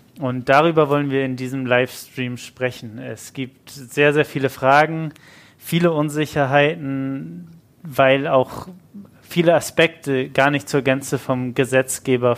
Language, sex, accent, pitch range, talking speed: German, male, German, 130-150 Hz, 125 wpm